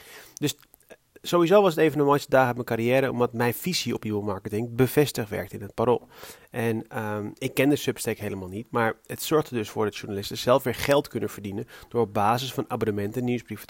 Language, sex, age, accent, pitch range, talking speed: Dutch, male, 30-49, Dutch, 110-135 Hz, 215 wpm